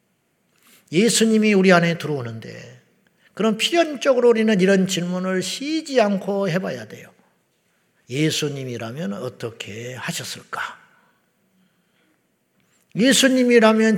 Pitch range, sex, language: 150-200 Hz, male, Korean